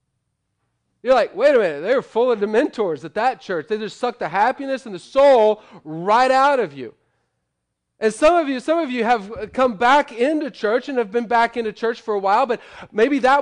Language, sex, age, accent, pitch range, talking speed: English, male, 30-49, American, 195-260 Hz, 220 wpm